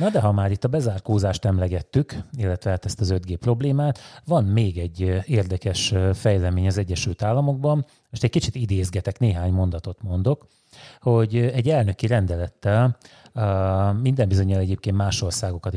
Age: 30-49